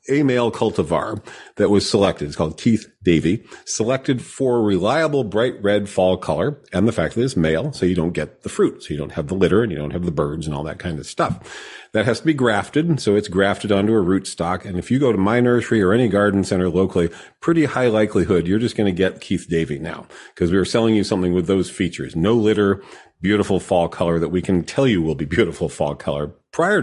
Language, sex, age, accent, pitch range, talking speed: English, male, 40-59, American, 90-115 Hz, 240 wpm